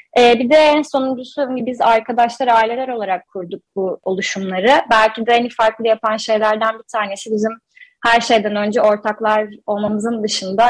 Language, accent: Turkish, native